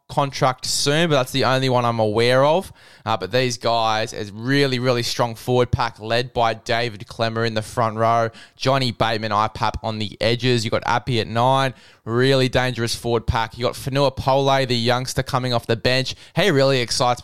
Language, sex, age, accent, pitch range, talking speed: English, male, 20-39, Australian, 115-130 Hz, 190 wpm